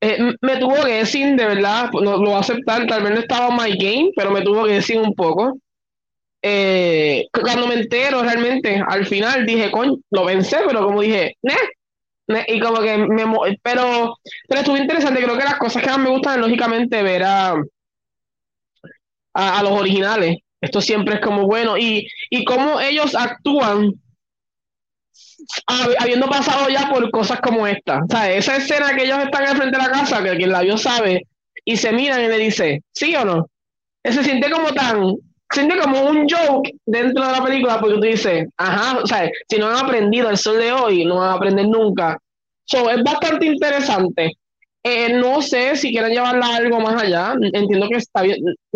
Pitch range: 205-265 Hz